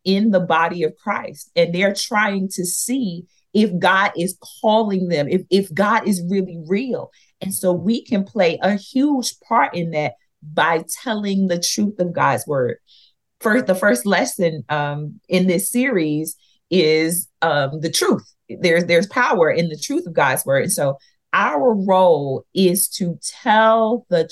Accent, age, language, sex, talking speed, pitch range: American, 40-59, English, female, 165 wpm, 165-215 Hz